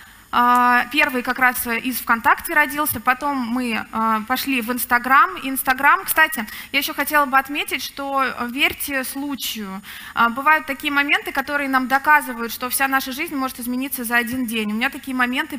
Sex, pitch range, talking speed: female, 240-285 Hz, 155 wpm